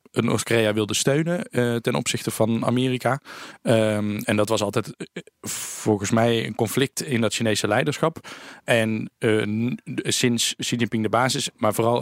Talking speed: 145 wpm